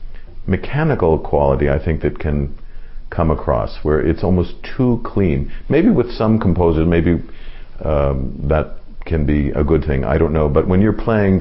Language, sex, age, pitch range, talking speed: English, male, 50-69, 75-90 Hz, 170 wpm